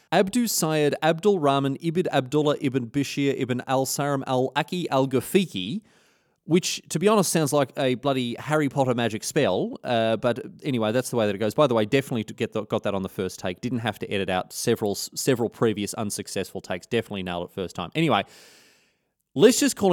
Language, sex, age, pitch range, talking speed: English, male, 30-49, 110-160 Hz, 205 wpm